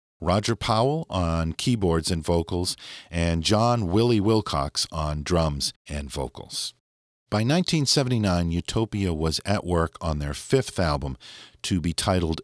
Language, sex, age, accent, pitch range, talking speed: English, male, 50-69, American, 75-115 Hz, 130 wpm